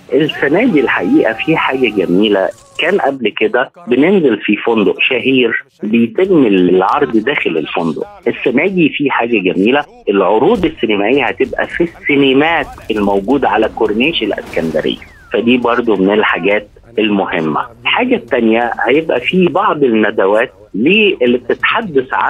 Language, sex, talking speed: Arabic, male, 115 wpm